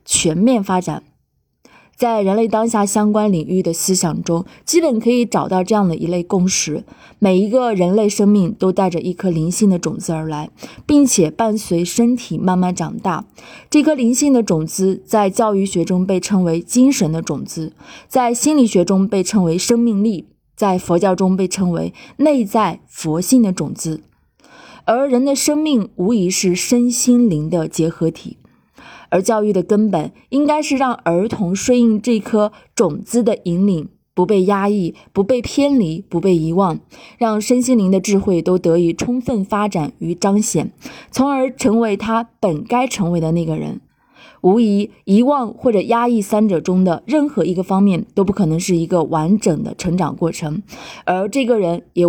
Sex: female